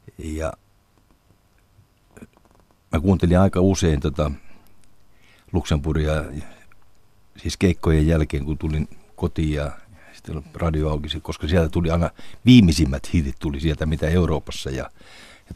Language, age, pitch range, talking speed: Finnish, 60-79, 80-100 Hz, 110 wpm